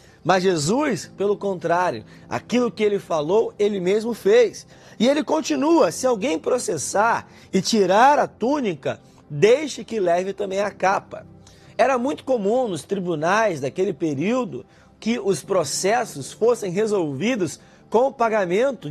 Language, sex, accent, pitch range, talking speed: Portuguese, male, Brazilian, 180-240 Hz, 135 wpm